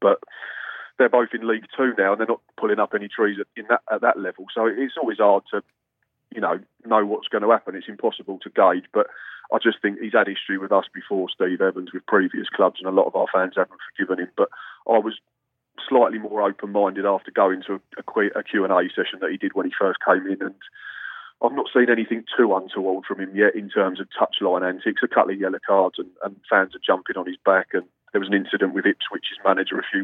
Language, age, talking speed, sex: English, 30-49, 235 wpm, male